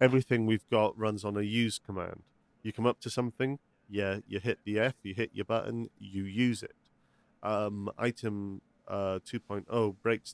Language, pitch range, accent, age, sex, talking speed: English, 100-115 Hz, British, 40-59, male, 175 wpm